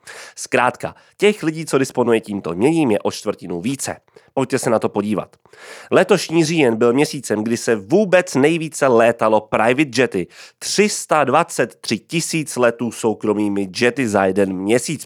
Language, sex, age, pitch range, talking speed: Czech, male, 30-49, 105-155 Hz, 140 wpm